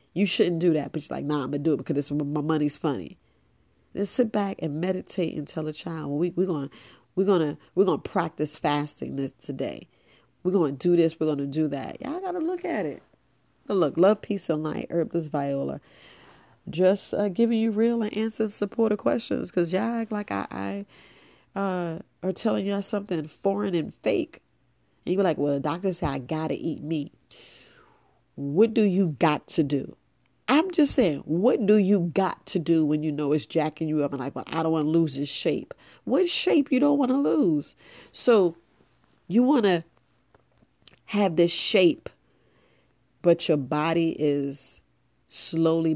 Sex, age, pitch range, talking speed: female, 40-59, 150-195 Hz, 190 wpm